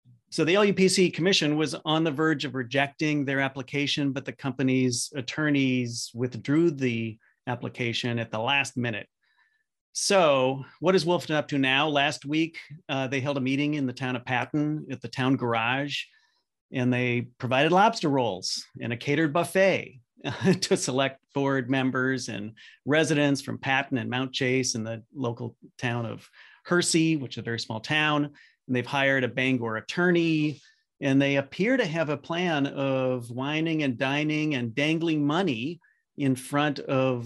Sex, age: male, 40-59